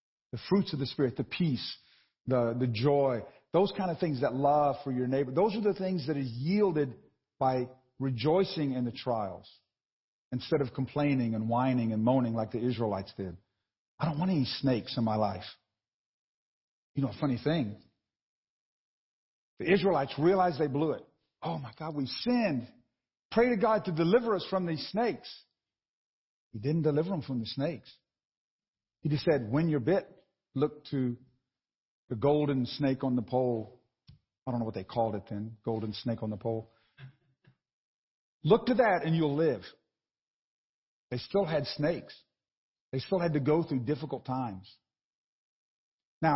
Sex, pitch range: male, 120-155 Hz